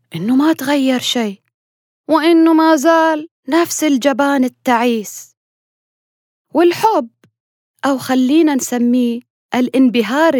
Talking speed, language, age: 85 wpm, Arabic, 20-39